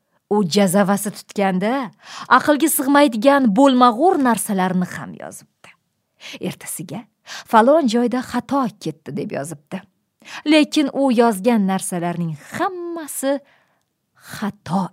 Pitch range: 195-290 Hz